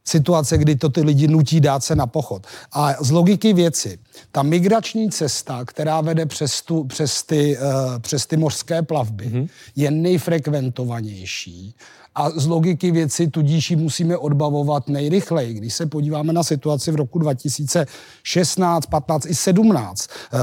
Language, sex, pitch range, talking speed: Czech, male, 140-165 Hz, 135 wpm